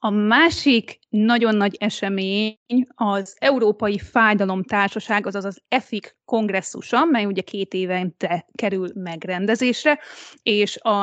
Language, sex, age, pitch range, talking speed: Hungarian, female, 30-49, 200-235 Hz, 115 wpm